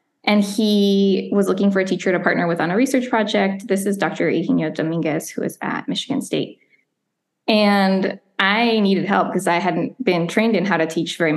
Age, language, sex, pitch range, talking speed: 10-29, English, female, 180-225 Hz, 200 wpm